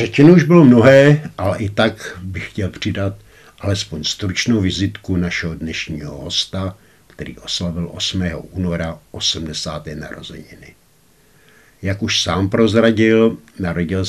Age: 60-79